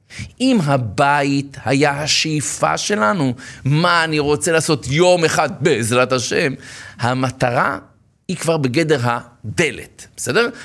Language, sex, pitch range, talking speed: Hebrew, male, 125-165 Hz, 105 wpm